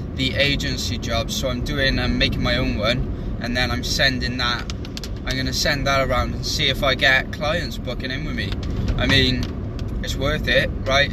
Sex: male